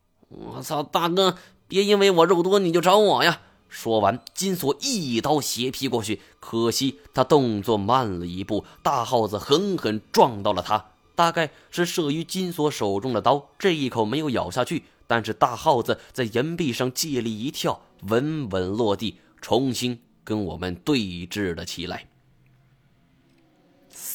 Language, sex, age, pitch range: Chinese, male, 20-39, 105-155 Hz